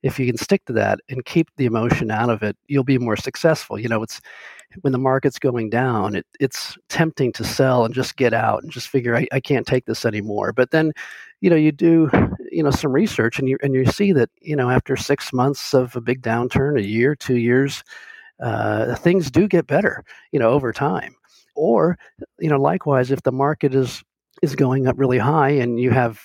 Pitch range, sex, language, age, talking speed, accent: 115-140 Hz, male, English, 50-69, 220 wpm, American